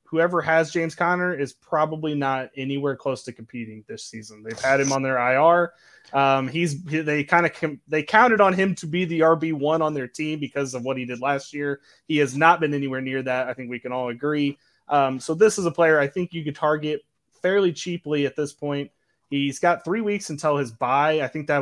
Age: 20-39